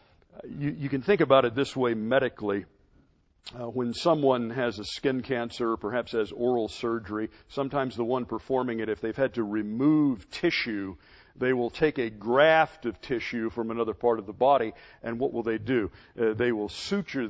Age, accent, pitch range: 50-69, American, 105-130 Hz